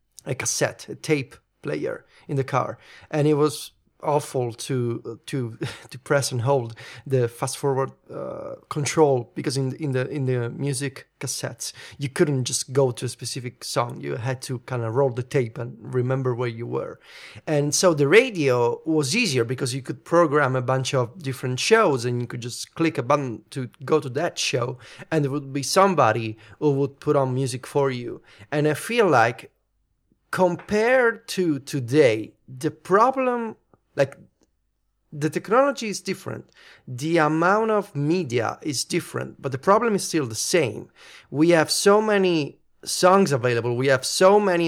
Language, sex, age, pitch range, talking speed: English, male, 30-49, 125-165 Hz, 170 wpm